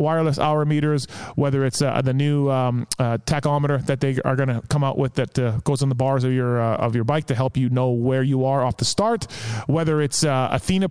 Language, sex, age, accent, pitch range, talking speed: English, male, 30-49, American, 130-155 Hz, 250 wpm